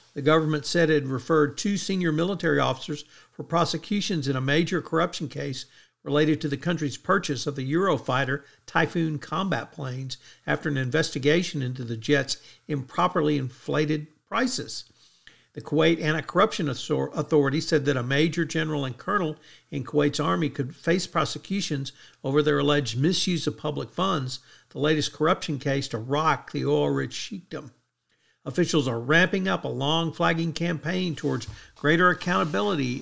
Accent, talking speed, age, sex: American, 145 wpm, 50-69, male